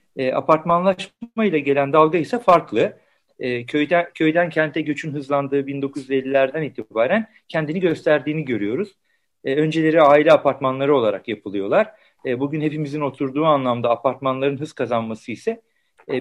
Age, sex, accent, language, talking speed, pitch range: 50-69, male, native, Turkish, 125 wpm, 125-160 Hz